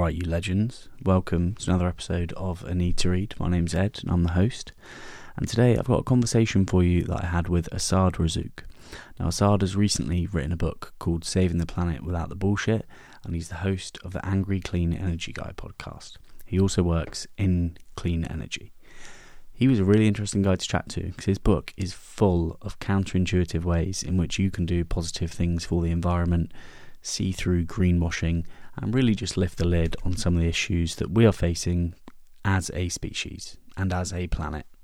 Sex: male